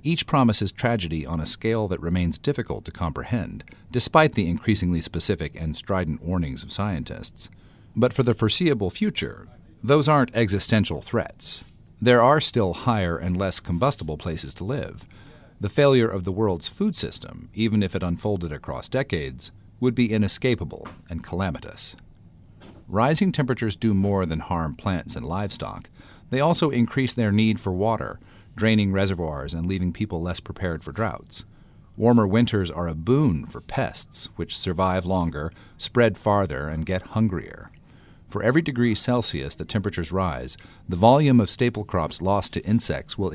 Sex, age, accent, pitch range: male, 40-59, American, 85-115 Hz